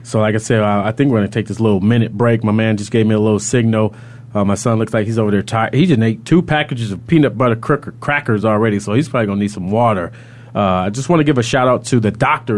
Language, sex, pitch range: English, male, 110-125 Hz